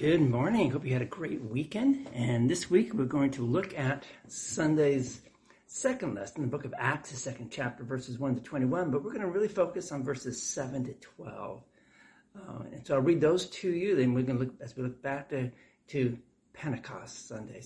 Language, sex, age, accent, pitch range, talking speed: English, male, 60-79, American, 125-170 Hz, 210 wpm